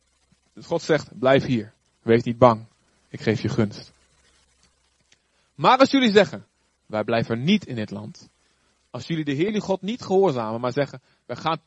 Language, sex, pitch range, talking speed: Dutch, male, 115-160 Hz, 175 wpm